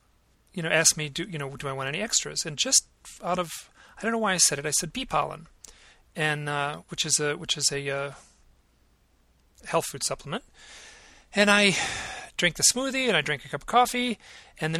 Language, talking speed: English, 215 wpm